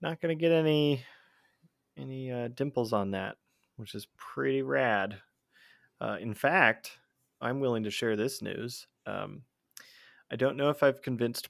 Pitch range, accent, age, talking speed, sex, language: 100-125 Hz, American, 30-49, 155 wpm, male, English